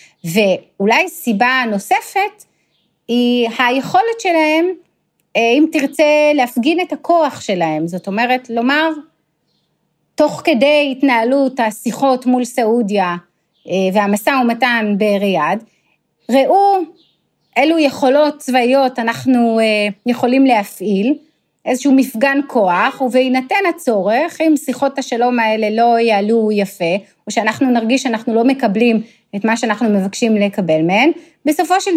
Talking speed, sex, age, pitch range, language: 105 wpm, female, 30-49, 215-285 Hz, Hebrew